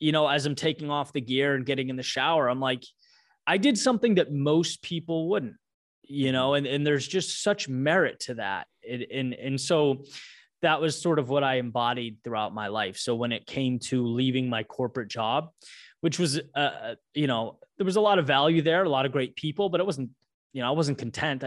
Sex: male